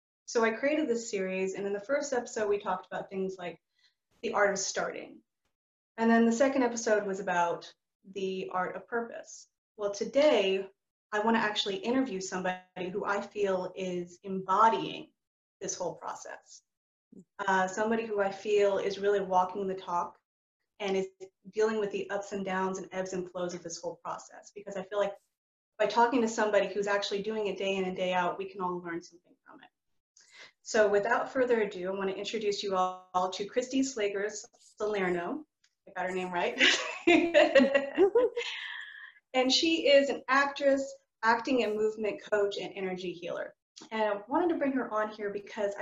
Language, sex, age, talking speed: English, female, 30-49, 175 wpm